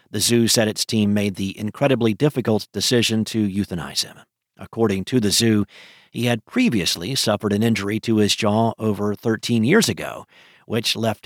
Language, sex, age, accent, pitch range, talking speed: English, male, 50-69, American, 110-155 Hz, 170 wpm